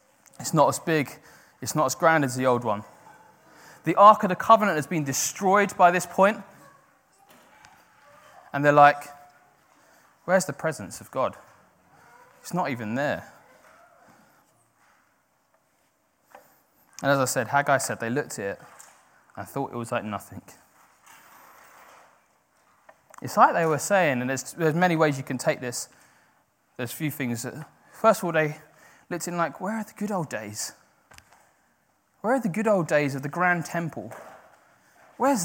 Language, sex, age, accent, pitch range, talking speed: English, male, 20-39, British, 140-195 Hz, 155 wpm